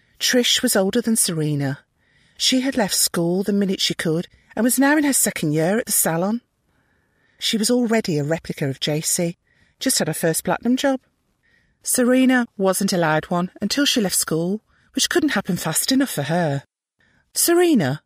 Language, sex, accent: English, female, British